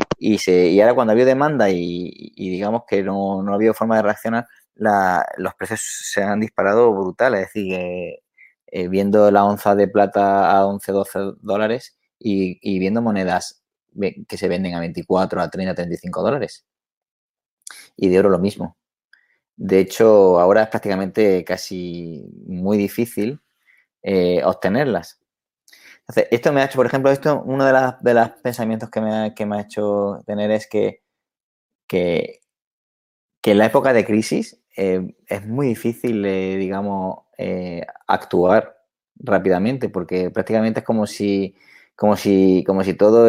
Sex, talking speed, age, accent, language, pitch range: male, 160 wpm, 20-39, Spanish, Spanish, 95-110 Hz